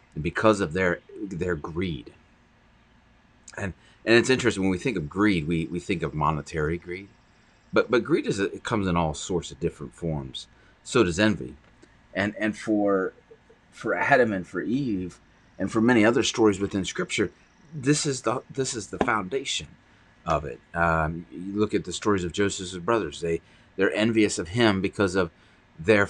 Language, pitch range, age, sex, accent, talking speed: English, 85-105 Hz, 30-49, male, American, 175 wpm